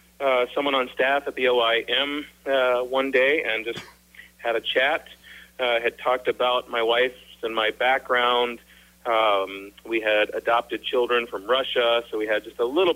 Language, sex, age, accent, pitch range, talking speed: English, male, 40-59, American, 115-135 Hz, 170 wpm